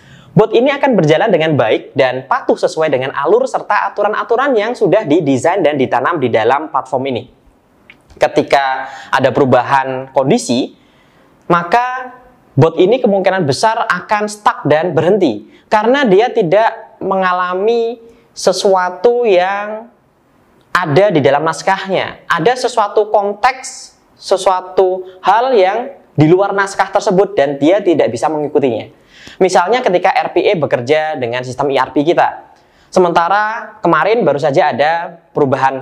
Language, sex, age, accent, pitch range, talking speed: Indonesian, male, 20-39, native, 155-230 Hz, 125 wpm